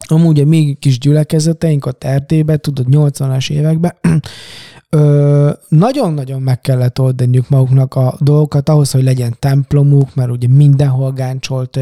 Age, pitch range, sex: 20-39, 130-150 Hz, male